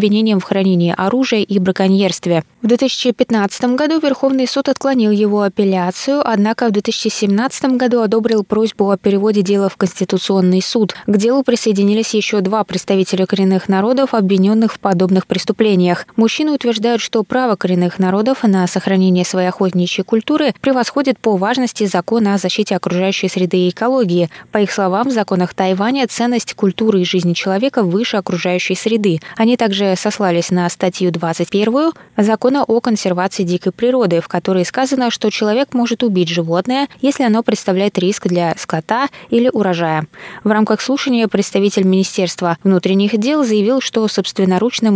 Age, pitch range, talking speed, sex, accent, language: 20-39, 185-235 Hz, 145 wpm, female, native, Russian